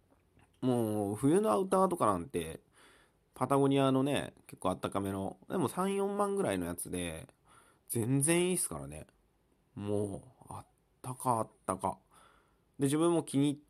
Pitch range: 90-150 Hz